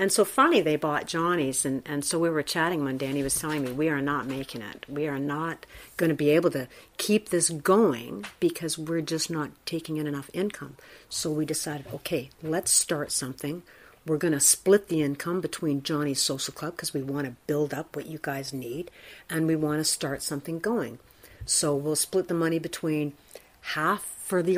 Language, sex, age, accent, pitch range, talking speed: English, female, 50-69, American, 140-175 Hz, 210 wpm